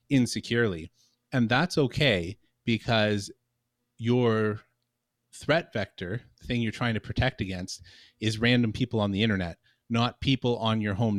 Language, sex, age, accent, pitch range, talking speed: English, male, 30-49, American, 100-120 Hz, 135 wpm